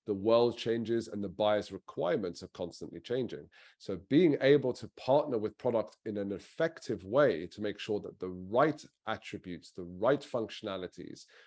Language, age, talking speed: English, 30-49, 160 wpm